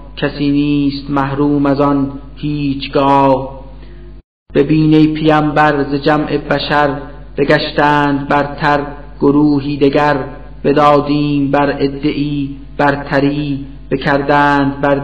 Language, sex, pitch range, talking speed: Persian, male, 140-145 Hz, 80 wpm